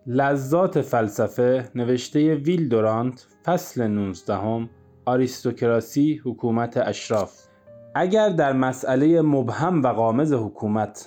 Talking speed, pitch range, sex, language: 85 wpm, 115-155 Hz, male, Persian